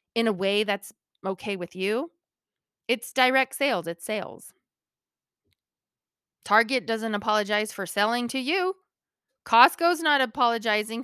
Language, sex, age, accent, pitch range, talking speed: English, female, 20-39, American, 215-315 Hz, 120 wpm